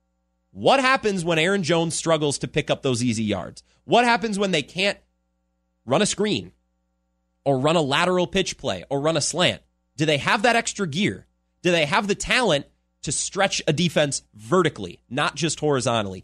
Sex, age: male, 30-49